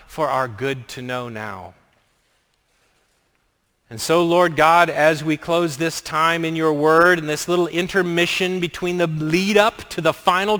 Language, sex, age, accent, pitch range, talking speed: English, male, 40-59, American, 155-205 Hz, 165 wpm